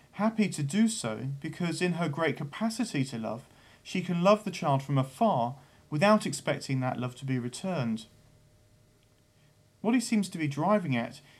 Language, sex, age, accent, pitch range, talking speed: English, male, 40-59, British, 125-170 Hz, 170 wpm